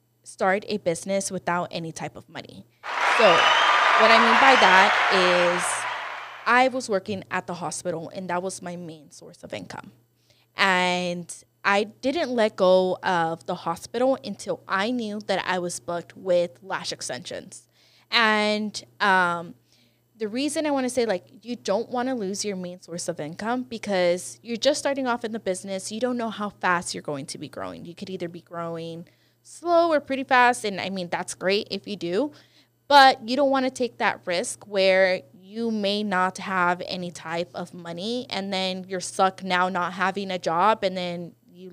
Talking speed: 185 wpm